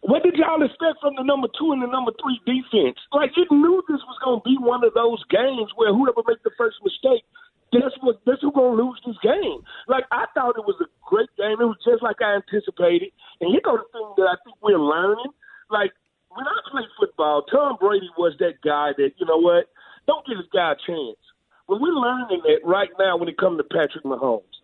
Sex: male